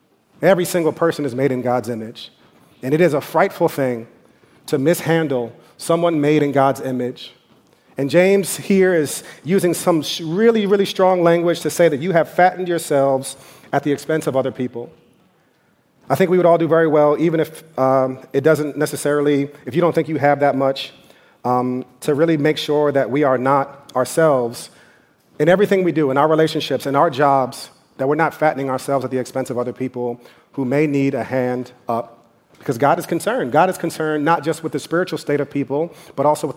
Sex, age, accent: male, 40-59, American